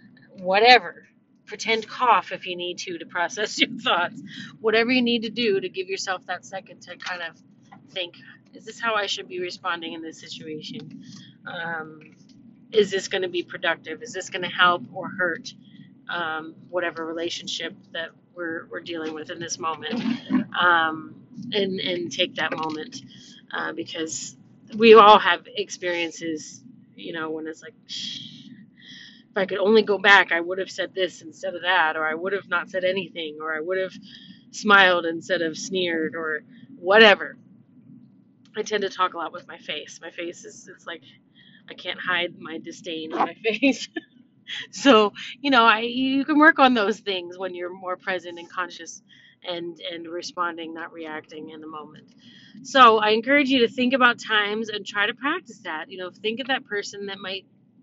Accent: American